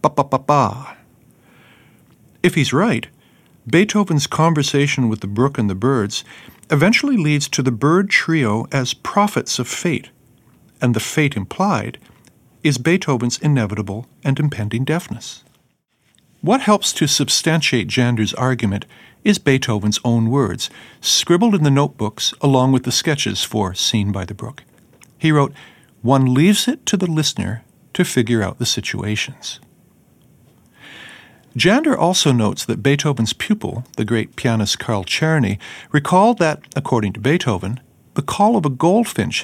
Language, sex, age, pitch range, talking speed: English, male, 50-69, 115-155 Hz, 140 wpm